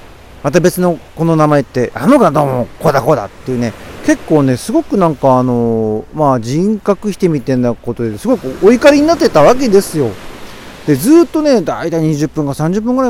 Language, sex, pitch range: Japanese, male, 135-215 Hz